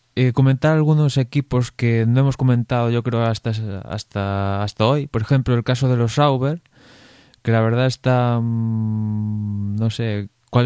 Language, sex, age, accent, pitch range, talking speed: Spanish, male, 20-39, Spanish, 110-125 Hz, 165 wpm